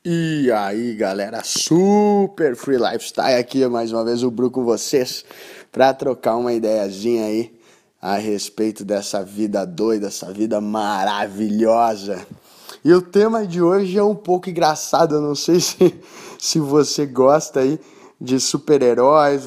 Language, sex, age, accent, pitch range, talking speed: Portuguese, male, 20-39, Brazilian, 115-160 Hz, 145 wpm